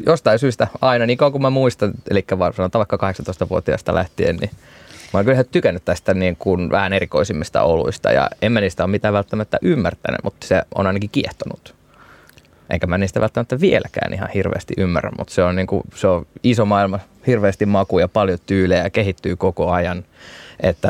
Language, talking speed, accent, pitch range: Finnish, 180 wpm, native, 95-110 Hz